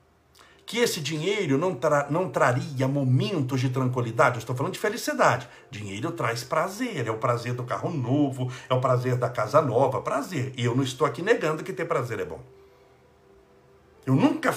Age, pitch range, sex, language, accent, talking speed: 60-79, 125-180 Hz, male, Portuguese, Brazilian, 175 wpm